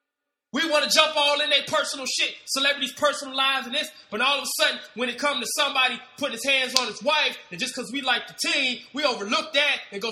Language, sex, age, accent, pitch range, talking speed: English, male, 20-39, American, 245-305 Hz, 250 wpm